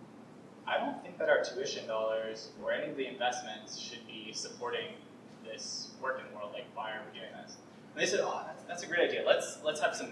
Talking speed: 220 wpm